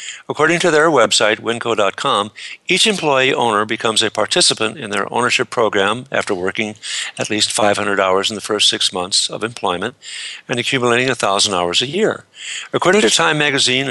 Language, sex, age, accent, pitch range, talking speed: English, male, 60-79, American, 110-145 Hz, 165 wpm